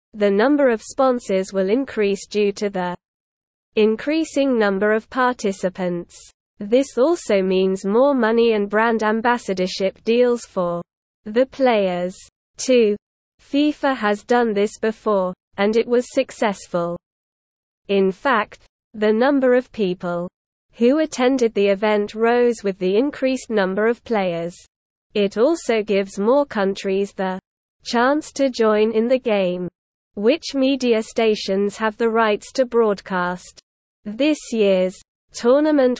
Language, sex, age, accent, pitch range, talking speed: English, female, 20-39, British, 195-250 Hz, 125 wpm